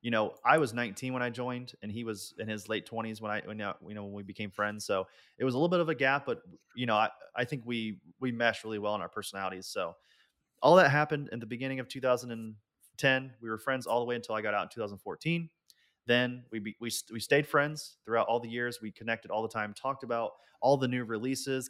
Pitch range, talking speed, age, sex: 105-125 Hz, 245 wpm, 30-49, male